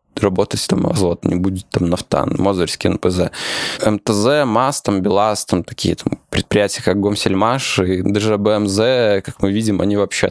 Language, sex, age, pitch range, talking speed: Russian, male, 20-39, 95-110 Hz, 155 wpm